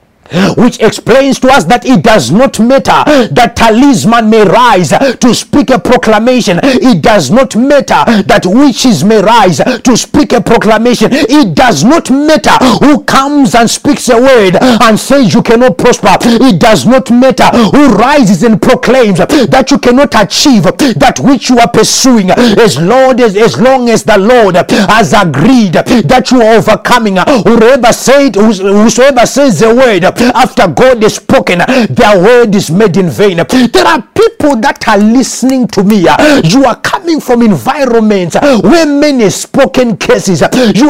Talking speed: 155 wpm